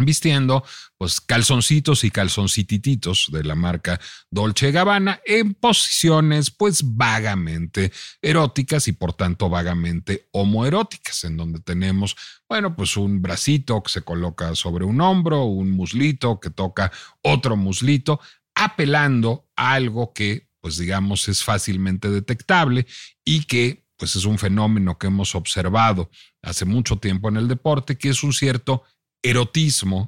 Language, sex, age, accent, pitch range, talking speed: Spanish, male, 40-59, Mexican, 100-135 Hz, 135 wpm